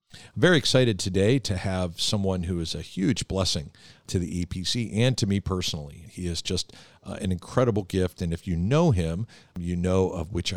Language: English